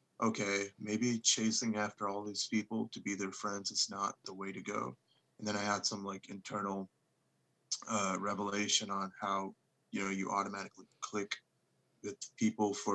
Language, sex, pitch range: English, male, 95-105 Hz